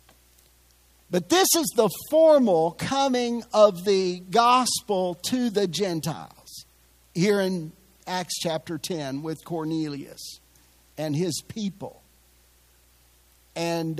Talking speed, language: 100 wpm, English